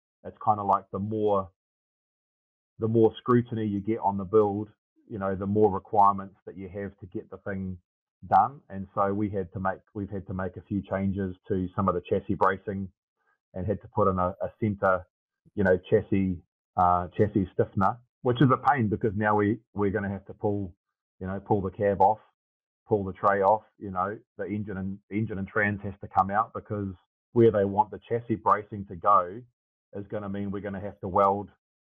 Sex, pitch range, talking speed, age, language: male, 95-110 Hz, 215 wpm, 30-49, English